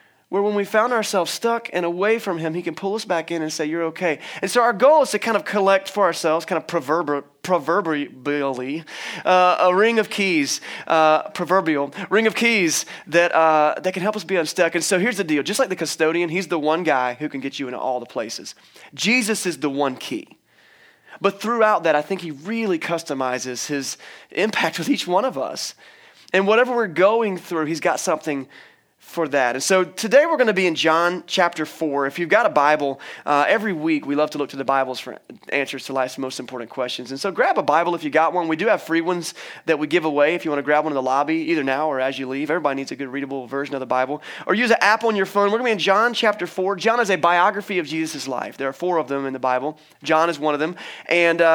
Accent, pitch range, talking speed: American, 150-200 Hz, 250 wpm